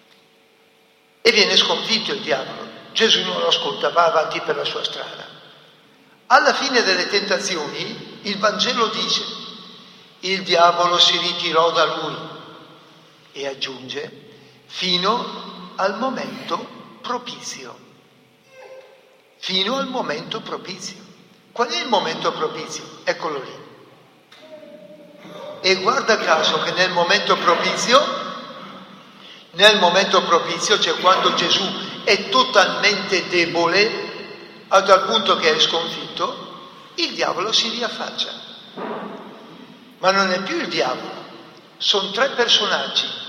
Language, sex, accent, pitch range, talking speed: Italian, male, native, 175-235 Hz, 110 wpm